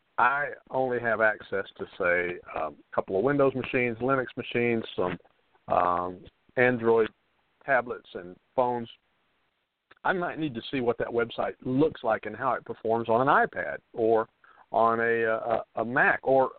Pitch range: 105-130 Hz